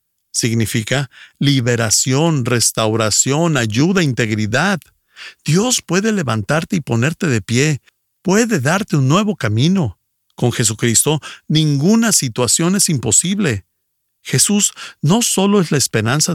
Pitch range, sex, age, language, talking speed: 120-165 Hz, male, 50-69, Spanish, 105 wpm